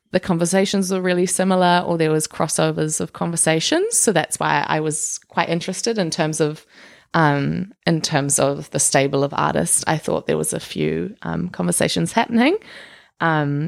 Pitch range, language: 150-185 Hz, English